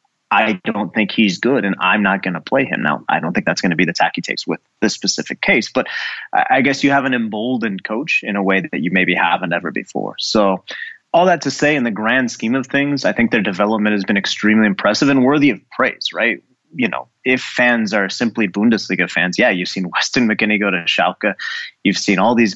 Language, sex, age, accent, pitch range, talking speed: English, male, 30-49, American, 100-120 Hz, 235 wpm